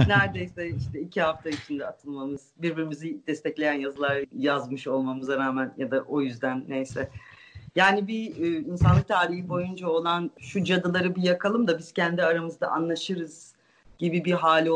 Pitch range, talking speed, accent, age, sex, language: 150-180 Hz, 145 wpm, native, 40-59, female, Turkish